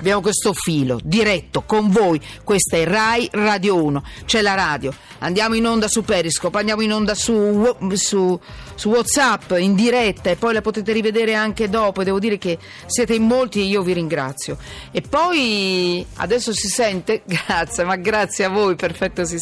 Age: 40-59